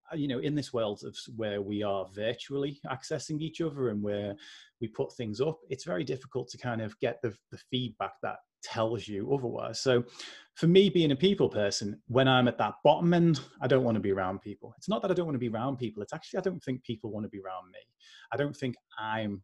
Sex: male